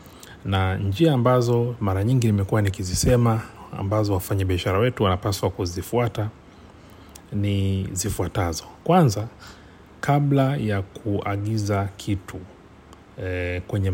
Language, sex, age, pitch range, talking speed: Swahili, male, 40-59, 90-110 Hz, 90 wpm